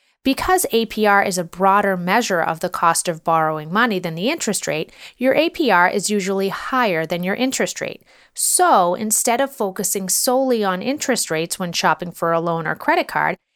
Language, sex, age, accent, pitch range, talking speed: English, female, 30-49, American, 175-250 Hz, 180 wpm